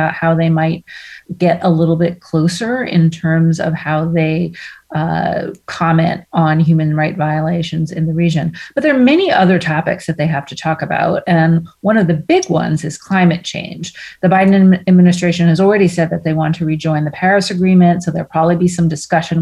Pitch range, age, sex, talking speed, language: 160-190 Hz, 30-49, female, 200 wpm, English